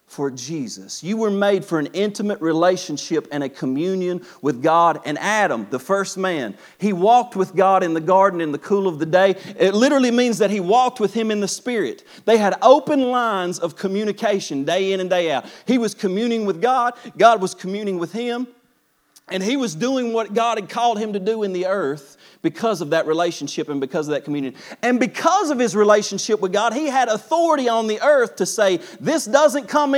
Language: English